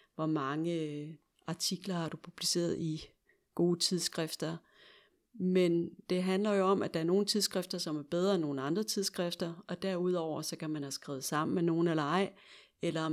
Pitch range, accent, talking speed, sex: 160-190 Hz, native, 180 wpm, female